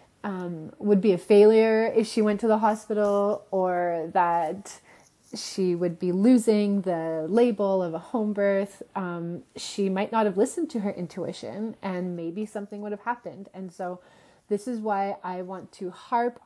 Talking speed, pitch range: 170 wpm, 185-220 Hz